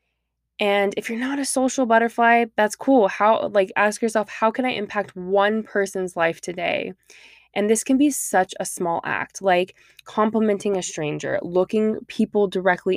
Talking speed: 165 wpm